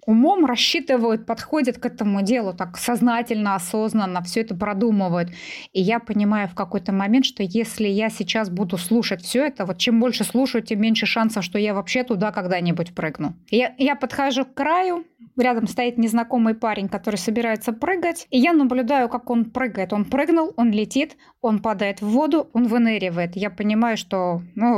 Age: 20-39